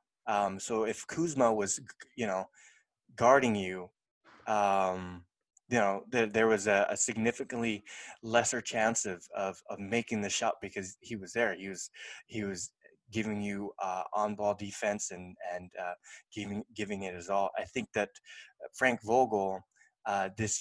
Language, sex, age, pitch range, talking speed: English, male, 20-39, 95-110 Hz, 160 wpm